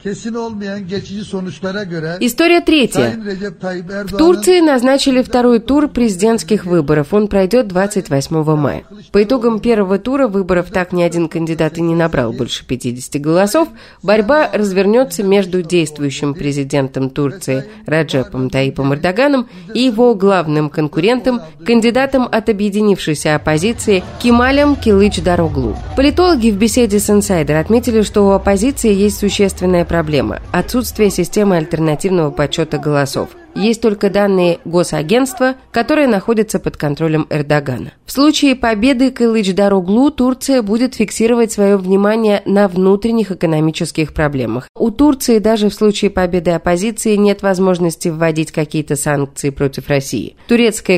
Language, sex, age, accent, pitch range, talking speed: Russian, female, 30-49, native, 165-240 Hz, 120 wpm